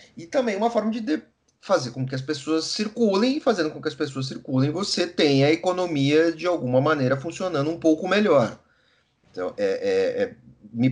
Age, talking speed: 40-59, 180 wpm